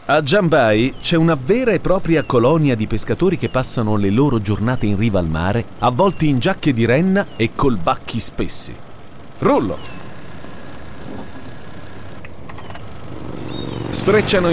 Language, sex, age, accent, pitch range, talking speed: Italian, male, 40-59, native, 110-165 Hz, 125 wpm